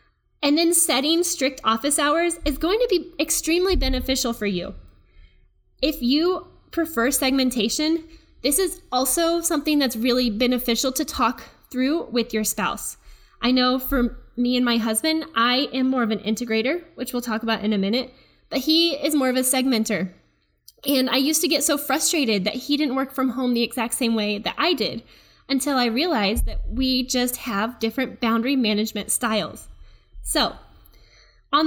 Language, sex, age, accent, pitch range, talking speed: English, female, 10-29, American, 230-300 Hz, 170 wpm